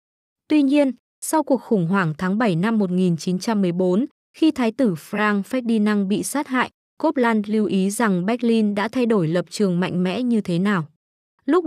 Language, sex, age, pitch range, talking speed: Vietnamese, female, 20-39, 185-245 Hz, 175 wpm